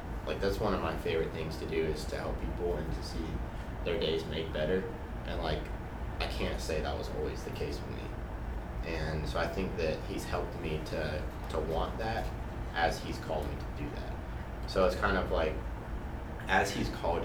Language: English